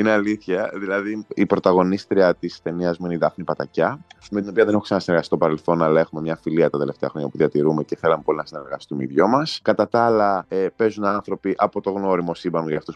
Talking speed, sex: 220 wpm, male